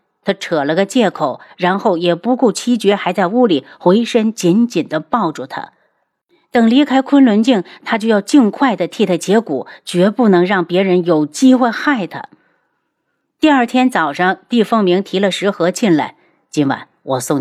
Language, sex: Chinese, female